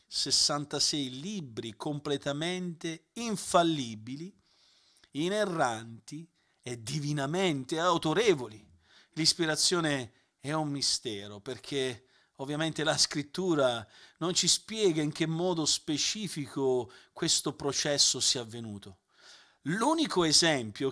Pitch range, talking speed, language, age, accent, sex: 130-175 Hz, 85 wpm, Italian, 50-69, native, male